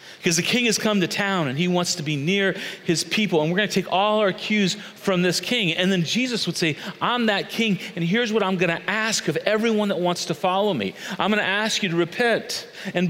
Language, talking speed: English, 255 wpm